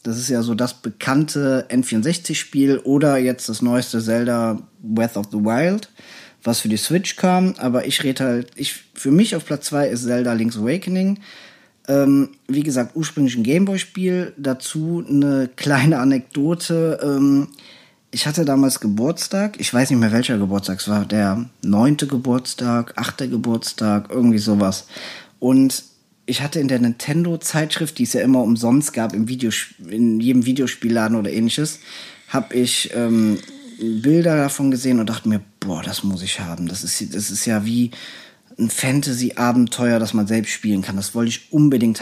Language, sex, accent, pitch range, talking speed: German, male, German, 115-150 Hz, 165 wpm